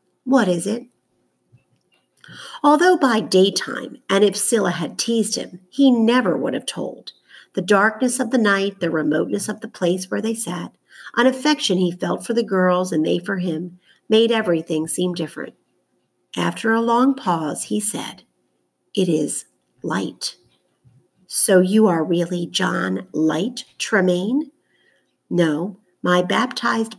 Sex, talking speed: female, 140 wpm